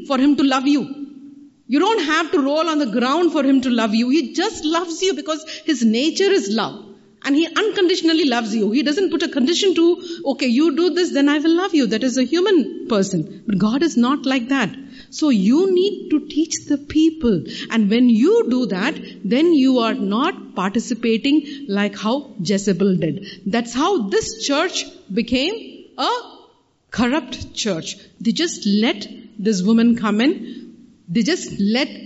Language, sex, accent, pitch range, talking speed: English, female, Indian, 220-295 Hz, 180 wpm